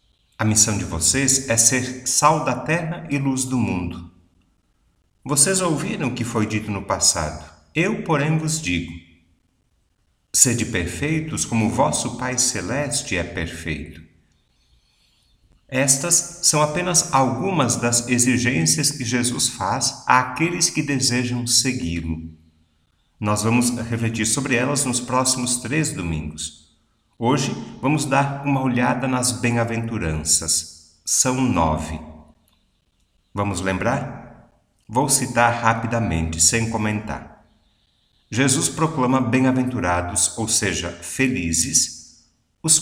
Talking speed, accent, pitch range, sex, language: 110 wpm, Brazilian, 90-130 Hz, male, Portuguese